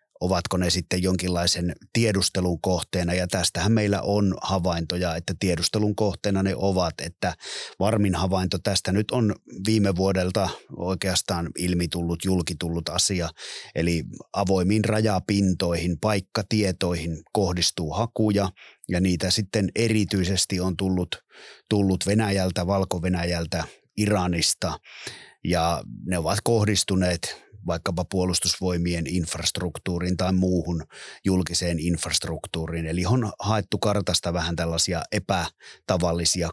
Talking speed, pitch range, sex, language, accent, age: 100 wpm, 85-100 Hz, male, Finnish, native, 30-49